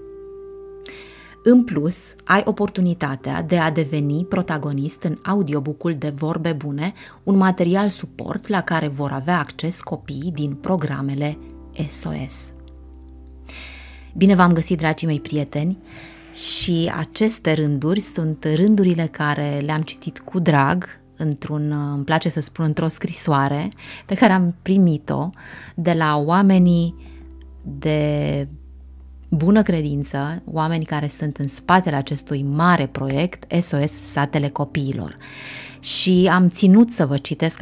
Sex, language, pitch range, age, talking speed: female, Romanian, 145-180 Hz, 20-39, 120 wpm